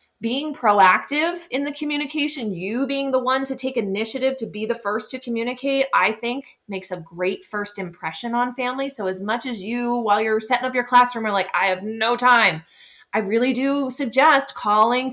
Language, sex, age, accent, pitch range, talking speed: English, female, 20-39, American, 195-250 Hz, 195 wpm